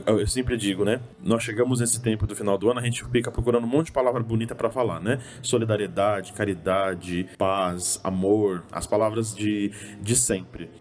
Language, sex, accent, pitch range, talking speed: Portuguese, male, Brazilian, 105-130 Hz, 185 wpm